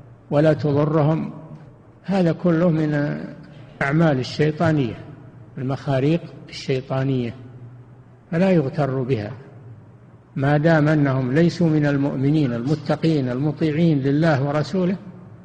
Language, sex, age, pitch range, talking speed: Arabic, male, 60-79, 130-155 Hz, 85 wpm